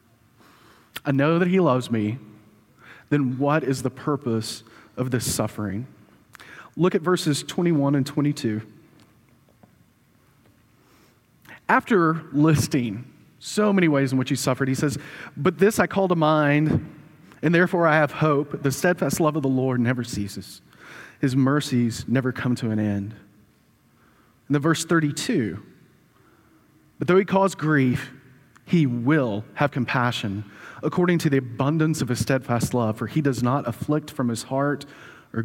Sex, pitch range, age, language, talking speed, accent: male, 115-150 Hz, 30-49, English, 145 wpm, American